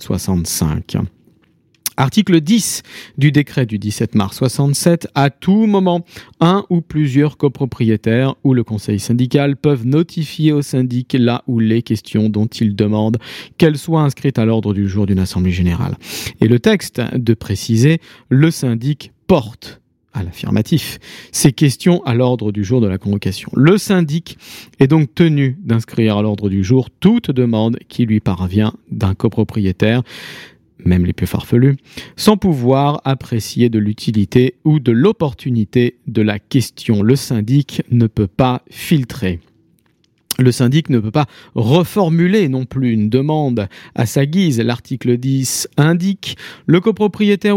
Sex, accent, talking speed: male, French, 145 wpm